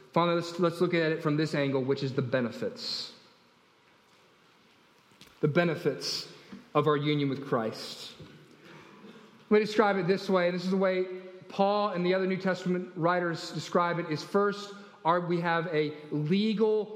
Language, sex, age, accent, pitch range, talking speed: English, male, 30-49, American, 160-210 Hz, 165 wpm